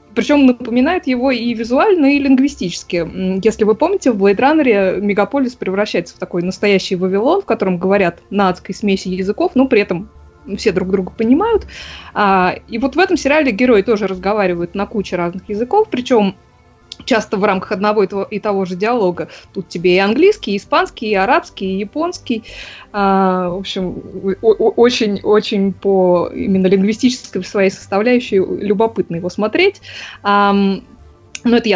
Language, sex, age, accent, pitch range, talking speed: Russian, female, 20-39, native, 190-245 Hz, 145 wpm